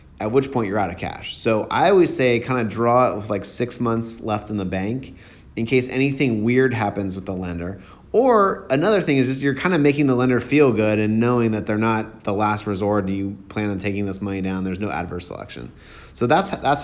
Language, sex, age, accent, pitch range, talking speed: English, male, 30-49, American, 100-125 Hz, 240 wpm